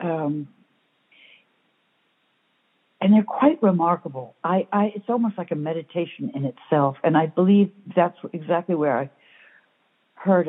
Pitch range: 150-195 Hz